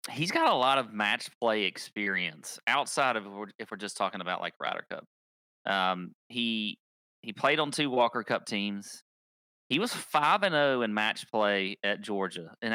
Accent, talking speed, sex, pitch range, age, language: American, 175 wpm, male, 100-125 Hz, 40-59, English